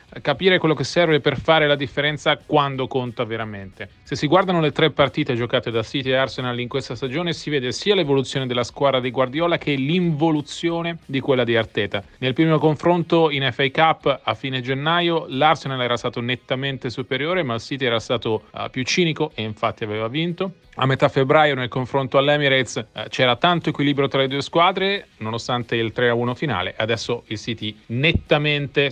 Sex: male